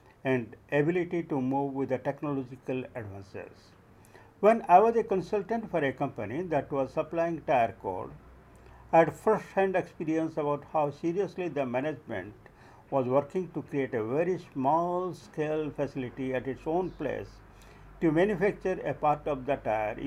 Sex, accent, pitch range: male, Indian, 125-170 Hz